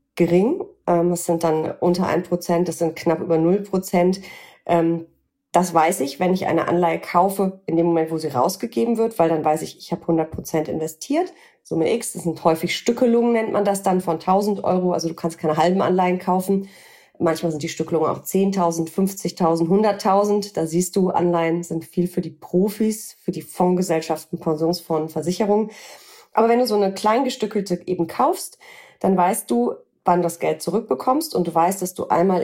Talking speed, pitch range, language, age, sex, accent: 180 wpm, 170-200 Hz, German, 30-49, female, German